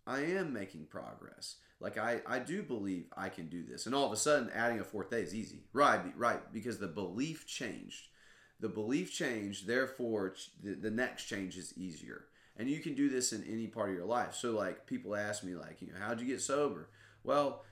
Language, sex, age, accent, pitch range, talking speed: English, male, 30-49, American, 95-125 Hz, 215 wpm